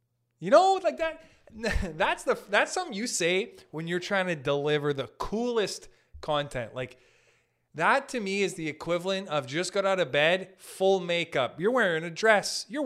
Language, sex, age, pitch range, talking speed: English, male, 20-39, 135-225 Hz, 170 wpm